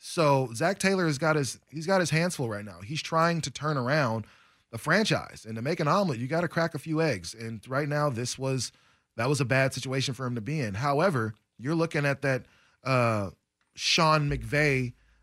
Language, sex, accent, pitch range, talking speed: English, male, American, 120-155 Hz, 215 wpm